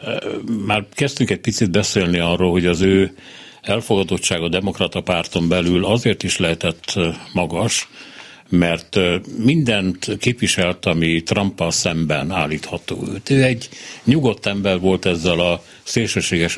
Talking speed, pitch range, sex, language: 125 wpm, 85-110 Hz, male, Hungarian